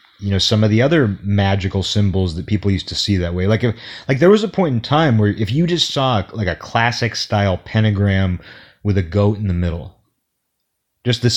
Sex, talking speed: male, 210 wpm